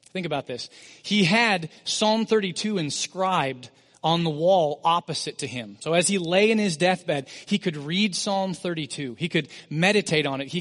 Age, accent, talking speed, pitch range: 30-49, American, 180 wpm, 145-195 Hz